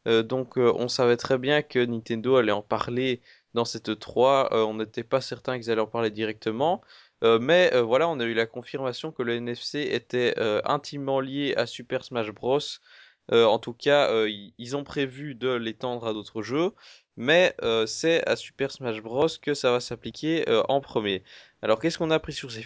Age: 20-39